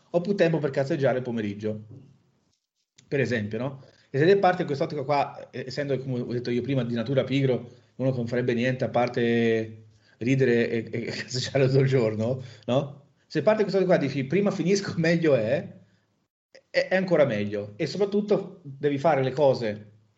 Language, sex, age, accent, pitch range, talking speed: Italian, male, 30-49, native, 120-160 Hz, 180 wpm